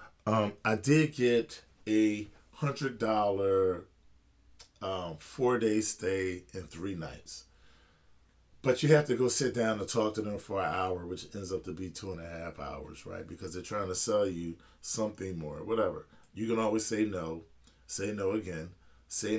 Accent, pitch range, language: American, 90-125 Hz, English